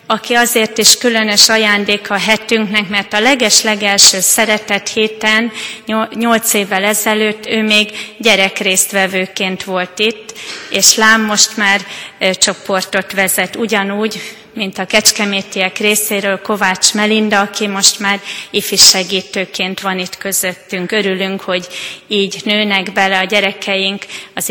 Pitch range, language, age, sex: 190-220 Hz, Hungarian, 30-49, female